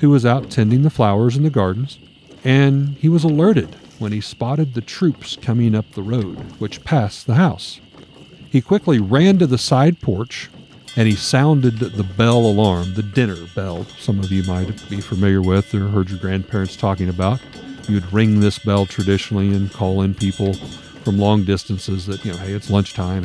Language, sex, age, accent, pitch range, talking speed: English, male, 50-69, American, 100-130 Hz, 190 wpm